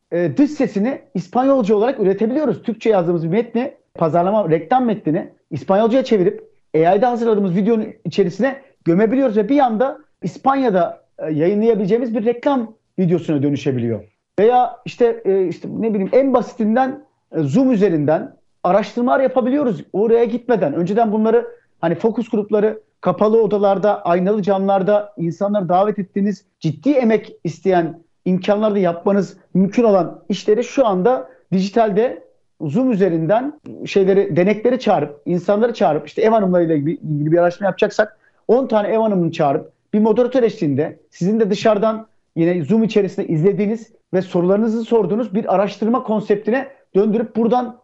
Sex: male